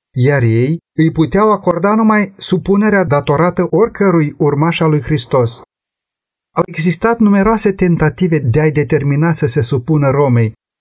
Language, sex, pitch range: Romanian, male, 130-185 Hz